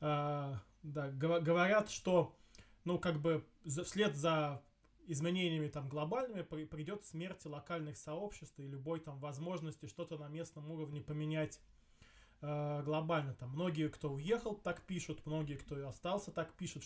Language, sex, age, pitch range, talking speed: Russian, male, 20-39, 145-170 Hz, 140 wpm